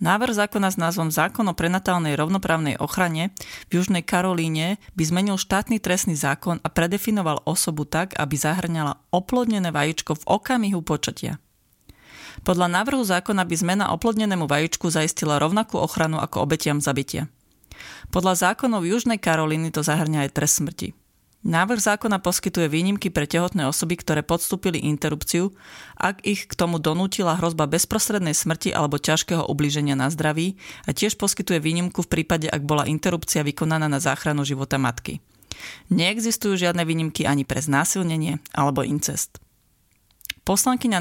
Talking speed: 140 wpm